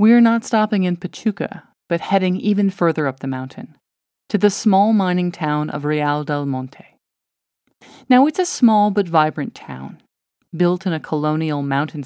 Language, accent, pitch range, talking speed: English, American, 145-210 Hz, 165 wpm